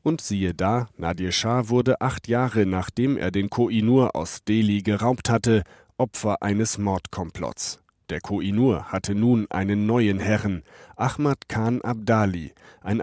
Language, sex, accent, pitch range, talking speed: German, male, German, 95-120 Hz, 140 wpm